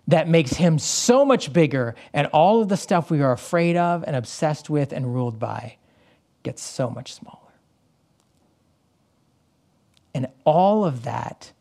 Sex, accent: male, American